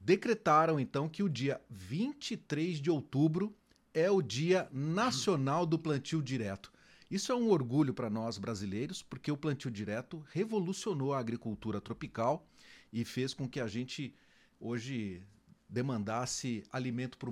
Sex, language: male, Portuguese